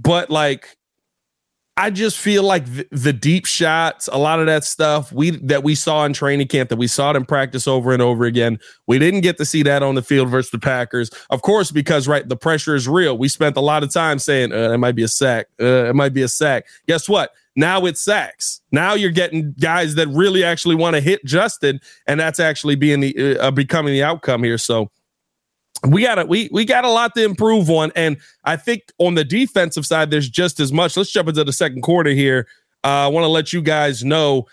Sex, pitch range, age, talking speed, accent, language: male, 135-170 Hz, 30-49, 235 wpm, American, English